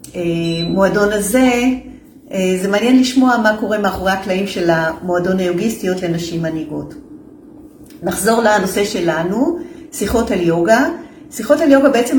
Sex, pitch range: female, 180-255 Hz